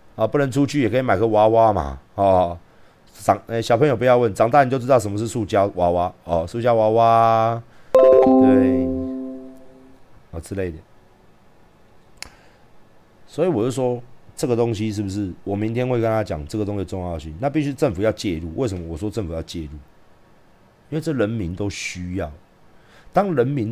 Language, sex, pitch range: Chinese, male, 95-120 Hz